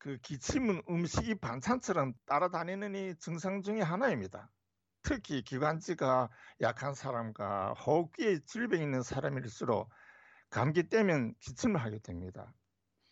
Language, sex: Korean, male